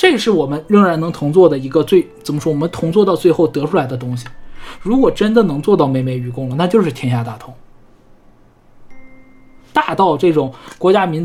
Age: 20-39